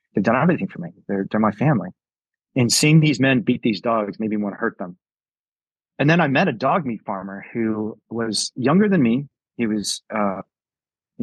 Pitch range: 110-155 Hz